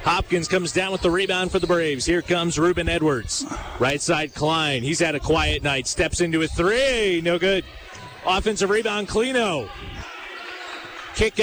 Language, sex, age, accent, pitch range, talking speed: English, male, 30-49, American, 165-215 Hz, 165 wpm